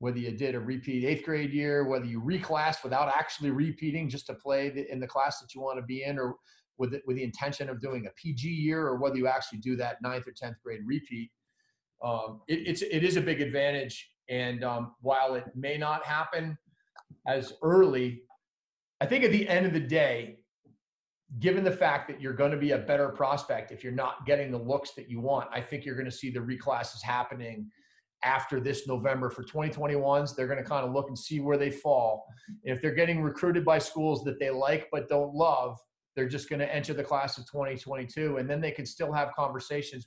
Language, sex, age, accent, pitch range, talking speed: English, male, 40-59, American, 125-155 Hz, 220 wpm